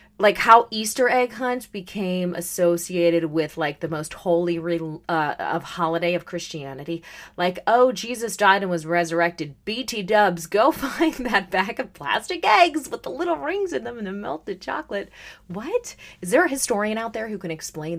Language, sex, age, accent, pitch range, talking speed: English, female, 30-49, American, 160-210 Hz, 175 wpm